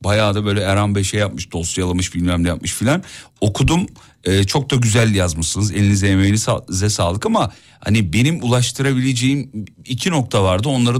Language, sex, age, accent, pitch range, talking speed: Turkish, male, 40-59, native, 100-135 Hz, 160 wpm